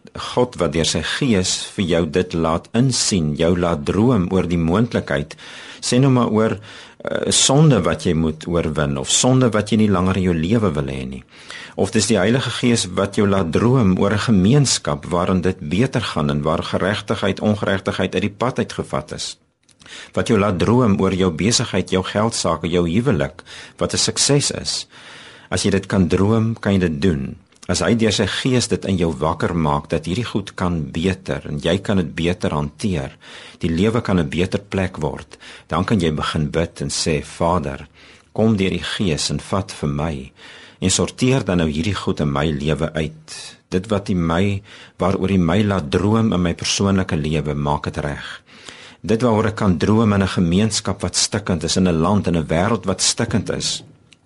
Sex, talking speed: male, 195 wpm